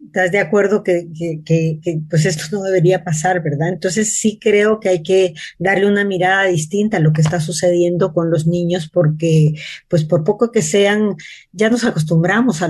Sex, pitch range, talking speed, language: female, 165-195 Hz, 195 wpm, Spanish